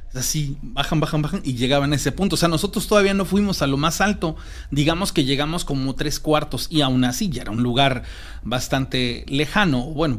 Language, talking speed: Spanish, 205 wpm